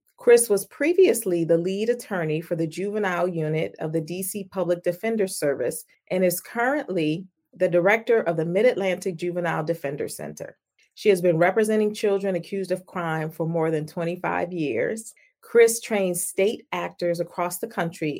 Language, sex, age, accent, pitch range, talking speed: English, female, 40-59, American, 170-210 Hz, 155 wpm